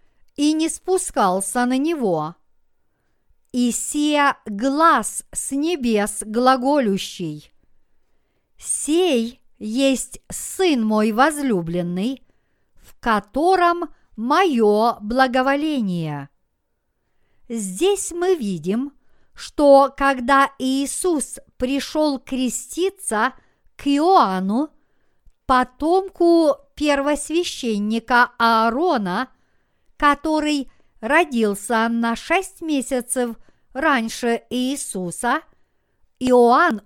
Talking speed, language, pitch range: 65 wpm, Russian, 220-300 Hz